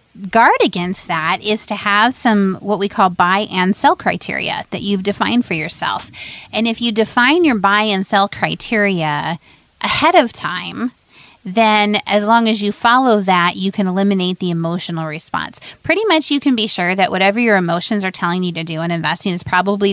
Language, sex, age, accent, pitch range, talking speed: English, female, 30-49, American, 180-230 Hz, 190 wpm